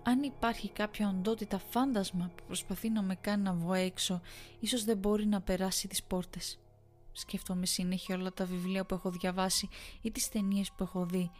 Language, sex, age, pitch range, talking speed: Greek, female, 20-39, 180-215 Hz, 180 wpm